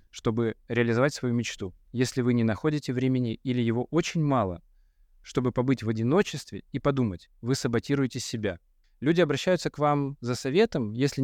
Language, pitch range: Russian, 115-155 Hz